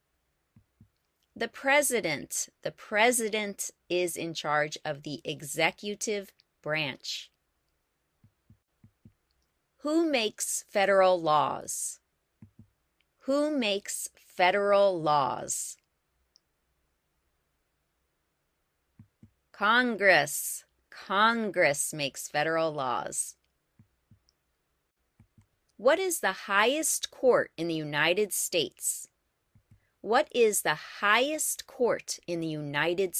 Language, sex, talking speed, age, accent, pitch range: English, female, 75 wpm, 30-49, American, 150-230 Hz